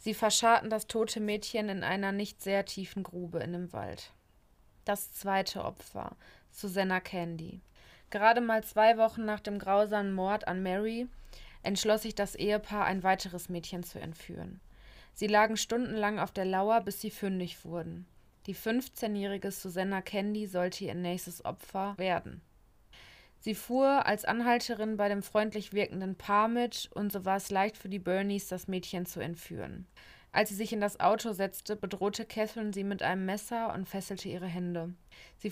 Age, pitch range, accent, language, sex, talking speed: 20-39, 185-215 Hz, German, German, female, 165 wpm